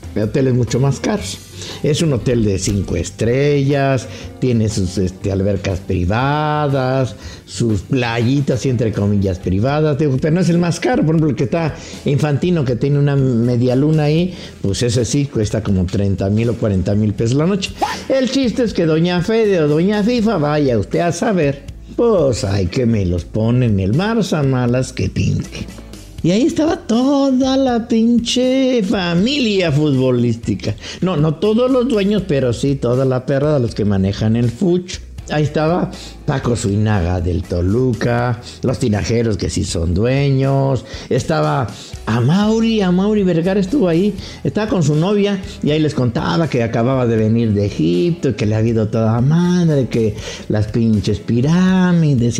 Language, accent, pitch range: English, Mexican, 110-165 Hz